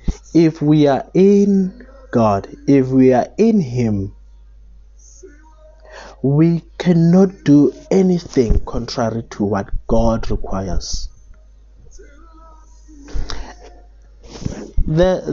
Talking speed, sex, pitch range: 80 wpm, male, 100-170 Hz